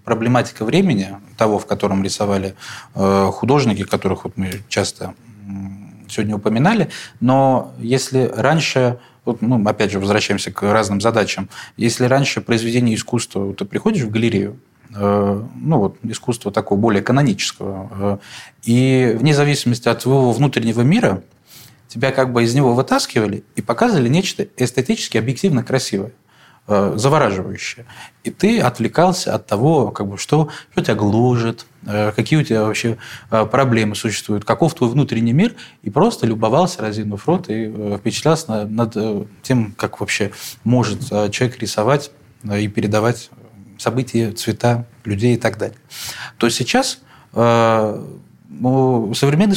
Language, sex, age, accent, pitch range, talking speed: Russian, male, 20-39, native, 105-130 Hz, 125 wpm